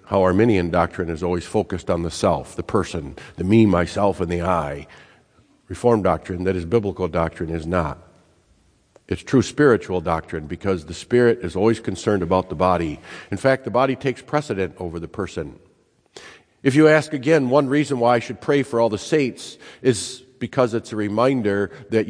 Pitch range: 90-120 Hz